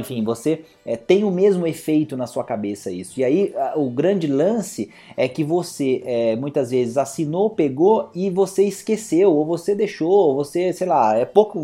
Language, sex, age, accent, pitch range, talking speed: Portuguese, male, 30-49, Brazilian, 125-165 Hz, 175 wpm